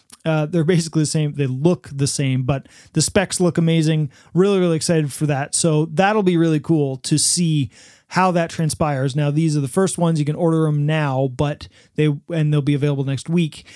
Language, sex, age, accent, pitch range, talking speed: English, male, 30-49, American, 155-185 Hz, 210 wpm